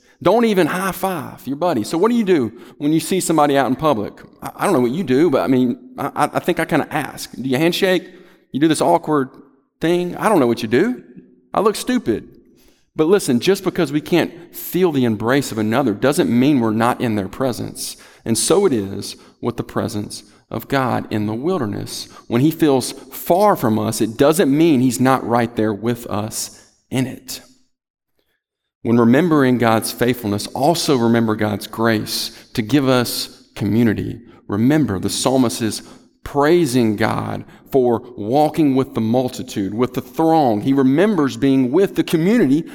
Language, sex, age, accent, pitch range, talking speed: English, male, 40-59, American, 115-160 Hz, 180 wpm